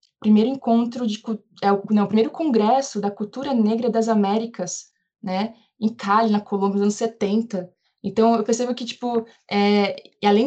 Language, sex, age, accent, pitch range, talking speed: Portuguese, female, 20-39, Brazilian, 195-230 Hz, 160 wpm